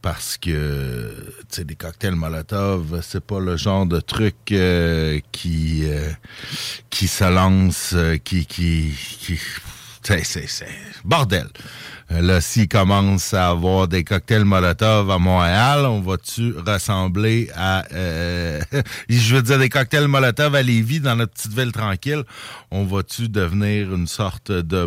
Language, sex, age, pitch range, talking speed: French, male, 60-79, 80-110 Hz, 150 wpm